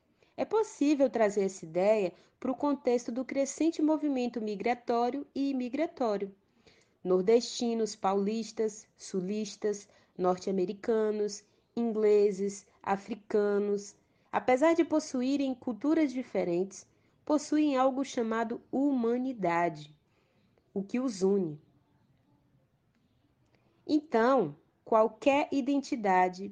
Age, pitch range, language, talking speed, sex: 20-39, 200-270 Hz, Portuguese, 80 wpm, female